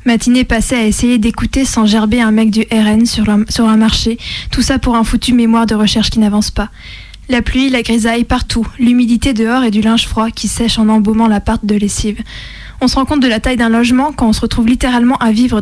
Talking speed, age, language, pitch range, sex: 240 wpm, 20-39, French, 220-245 Hz, female